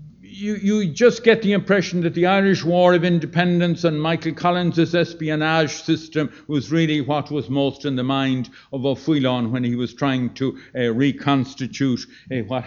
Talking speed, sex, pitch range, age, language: 170 wpm, male, 135-170 Hz, 60-79, English